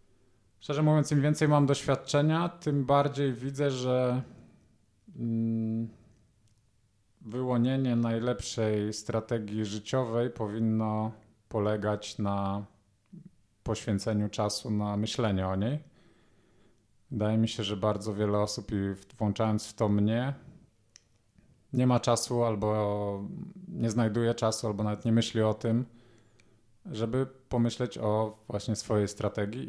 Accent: native